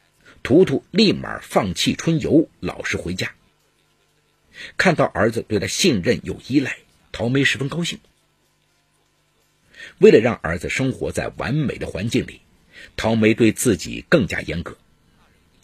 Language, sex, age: Chinese, male, 50-69